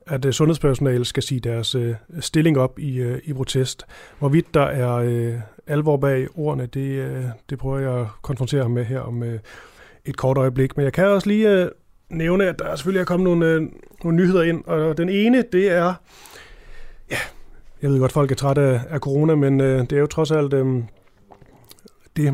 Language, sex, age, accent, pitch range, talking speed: Danish, male, 30-49, native, 130-160 Hz, 170 wpm